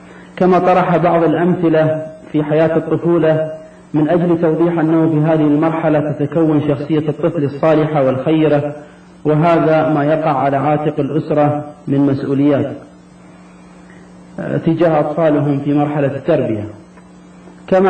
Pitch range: 145-165 Hz